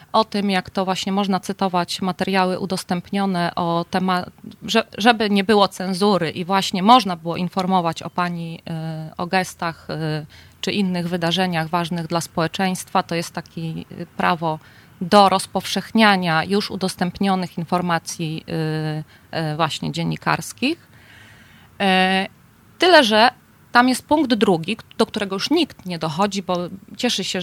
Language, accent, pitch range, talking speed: Polish, native, 175-205 Hz, 125 wpm